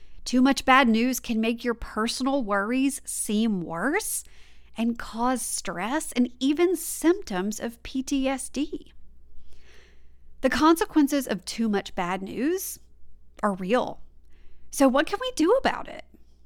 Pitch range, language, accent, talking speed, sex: 190-270 Hz, English, American, 130 wpm, female